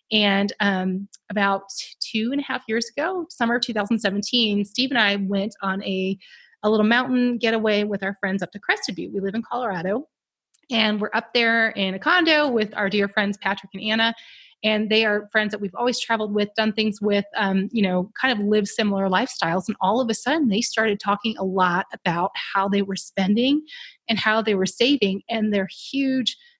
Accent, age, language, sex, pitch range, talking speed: American, 30-49, English, female, 195-245 Hz, 205 wpm